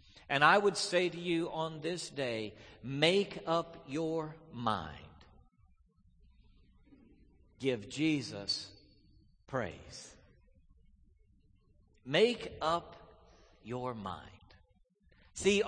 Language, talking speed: English, 80 wpm